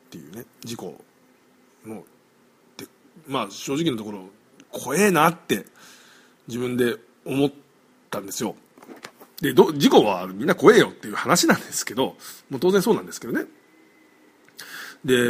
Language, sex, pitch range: Japanese, male, 115-190 Hz